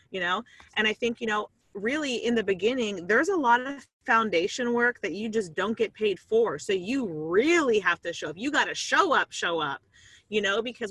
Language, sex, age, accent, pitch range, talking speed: English, female, 30-49, American, 190-240 Hz, 225 wpm